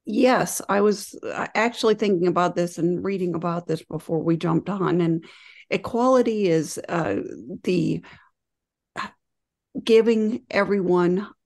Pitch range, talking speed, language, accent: 165-185 Hz, 115 wpm, English, American